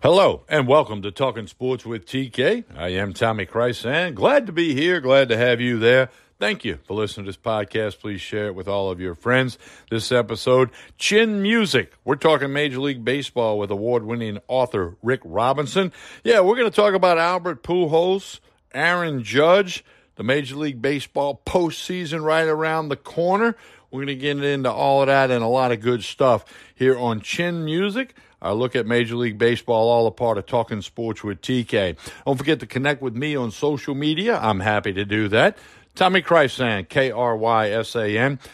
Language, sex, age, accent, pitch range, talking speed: English, male, 60-79, American, 110-140 Hz, 185 wpm